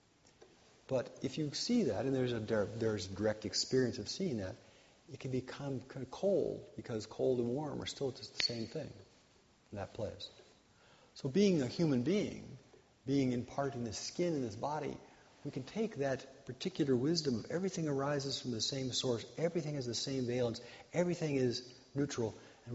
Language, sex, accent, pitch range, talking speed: English, male, American, 100-135 Hz, 185 wpm